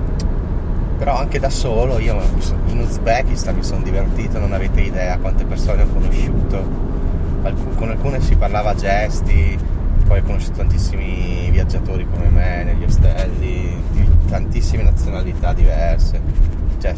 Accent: native